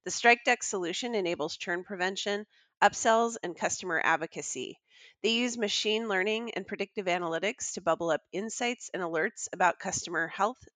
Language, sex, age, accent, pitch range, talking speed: English, female, 30-49, American, 180-230 Hz, 145 wpm